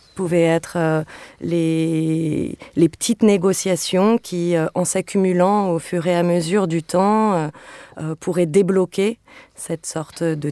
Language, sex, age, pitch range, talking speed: French, female, 20-39, 155-175 Hz, 145 wpm